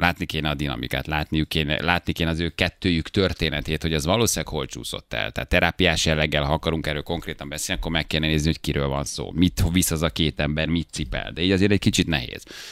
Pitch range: 75-95 Hz